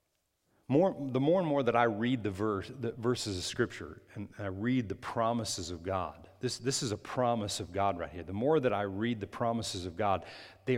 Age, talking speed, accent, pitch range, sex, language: 40-59, 210 wpm, American, 100-125 Hz, male, English